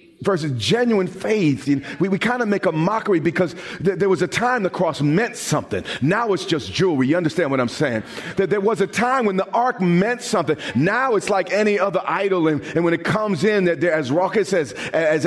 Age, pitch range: 40-59, 155-215 Hz